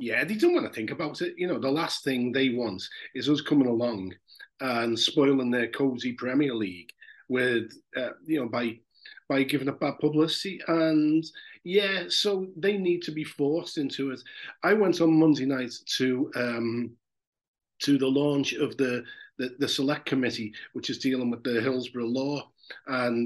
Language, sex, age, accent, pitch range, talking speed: English, male, 40-59, British, 120-155 Hz, 180 wpm